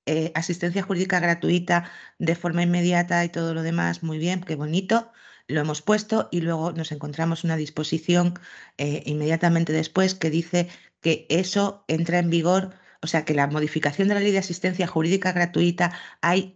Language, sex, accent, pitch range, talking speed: Spanish, female, Spanish, 145-185 Hz, 170 wpm